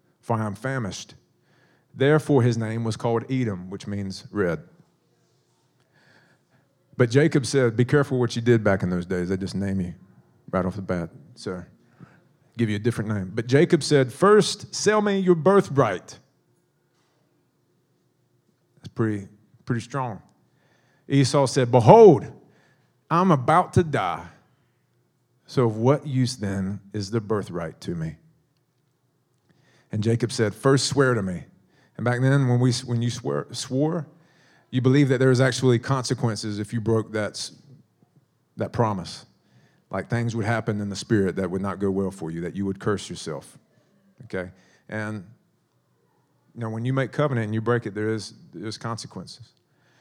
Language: English